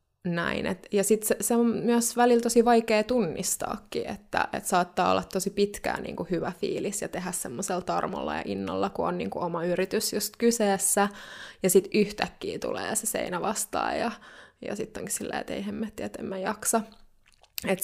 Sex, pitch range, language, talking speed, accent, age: female, 180-215 Hz, Finnish, 180 wpm, native, 20-39